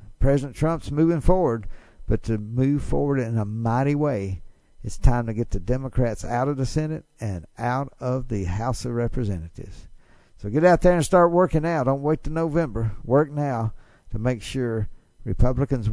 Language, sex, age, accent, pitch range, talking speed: English, male, 60-79, American, 110-140 Hz, 175 wpm